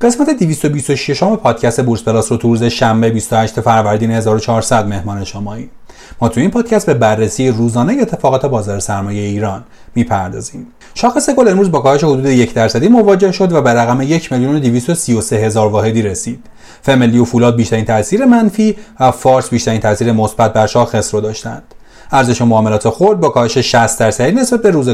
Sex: male